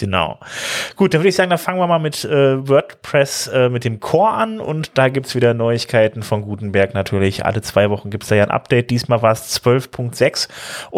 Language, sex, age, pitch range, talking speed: German, male, 30-49, 105-135 Hz, 220 wpm